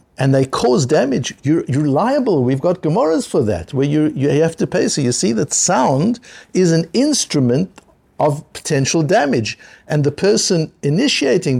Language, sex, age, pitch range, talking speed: English, male, 60-79, 135-195 Hz, 170 wpm